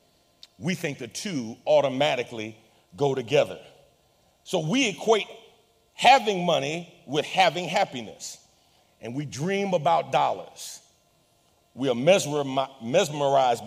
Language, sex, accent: English, male, American